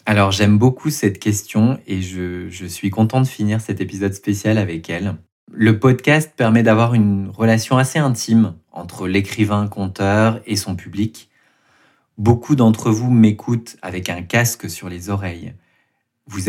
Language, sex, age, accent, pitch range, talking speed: French, male, 20-39, French, 95-120 Hz, 150 wpm